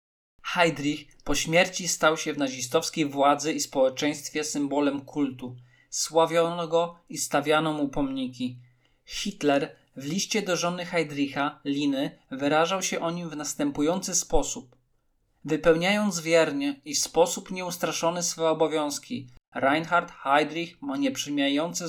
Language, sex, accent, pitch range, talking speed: Polish, male, native, 140-170 Hz, 120 wpm